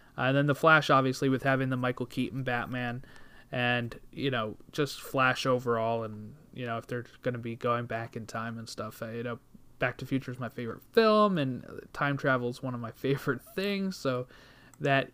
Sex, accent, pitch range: male, American, 120-145 Hz